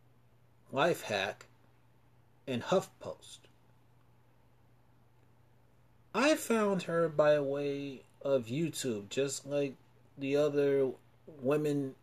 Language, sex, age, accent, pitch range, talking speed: English, male, 30-49, American, 120-140 Hz, 85 wpm